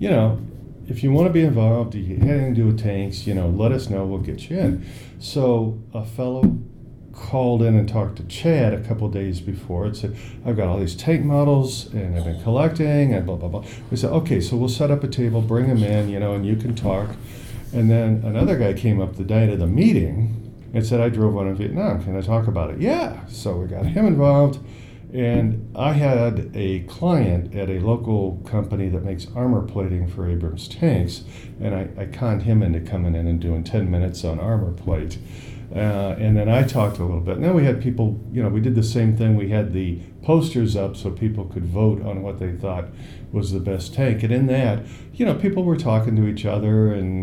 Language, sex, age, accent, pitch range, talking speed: English, male, 50-69, American, 95-120 Hz, 230 wpm